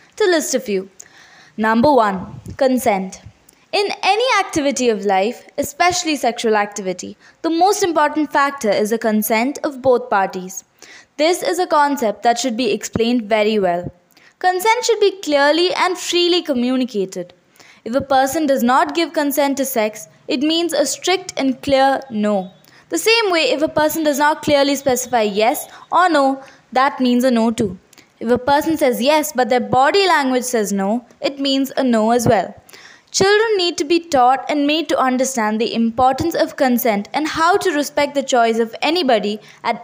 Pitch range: 230-310 Hz